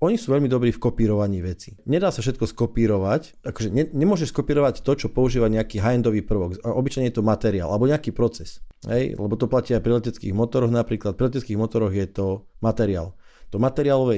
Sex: male